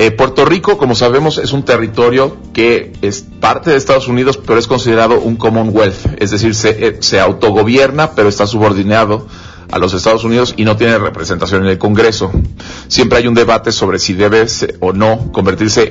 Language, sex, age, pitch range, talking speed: Spanish, male, 40-59, 95-125 Hz, 180 wpm